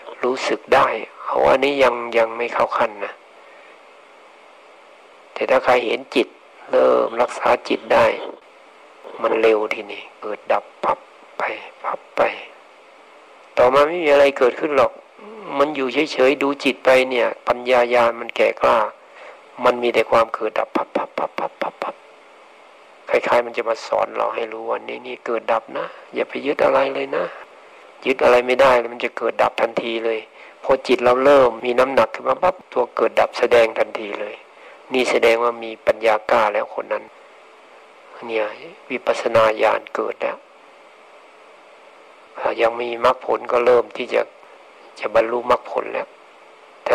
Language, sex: Thai, male